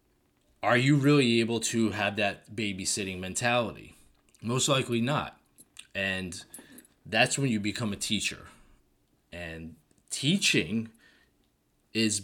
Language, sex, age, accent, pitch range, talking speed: English, male, 20-39, American, 100-135 Hz, 110 wpm